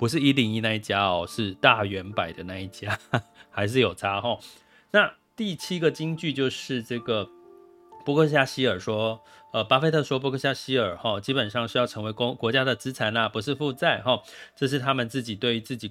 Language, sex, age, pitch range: Chinese, male, 30-49, 110-145 Hz